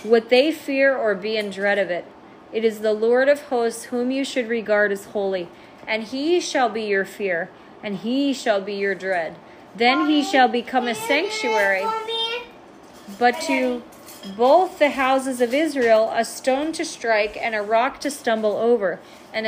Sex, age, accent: female, 30-49, American